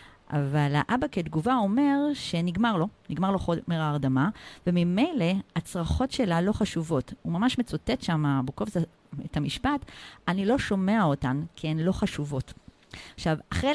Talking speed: 140 wpm